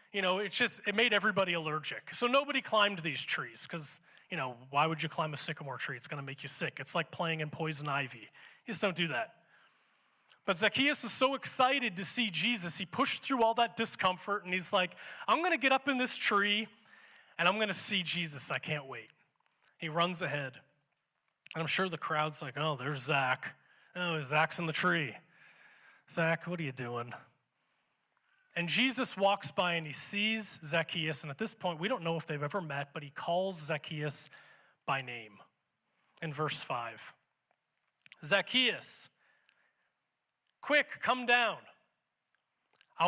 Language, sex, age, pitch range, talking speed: English, male, 20-39, 155-225 Hz, 180 wpm